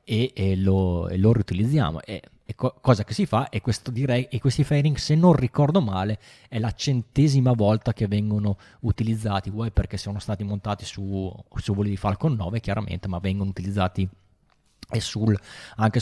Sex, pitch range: male, 110-135 Hz